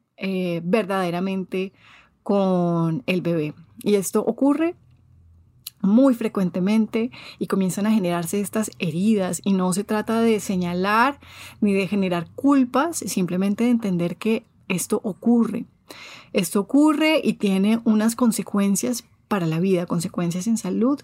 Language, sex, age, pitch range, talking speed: Spanish, female, 30-49, 185-230 Hz, 125 wpm